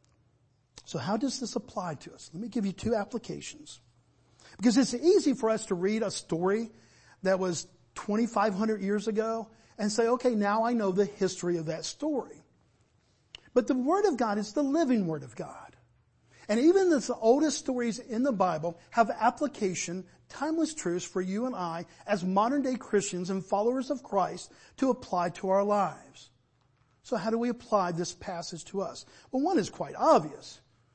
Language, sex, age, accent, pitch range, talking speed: English, male, 50-69, American, 165-240 Hz, 180 wpm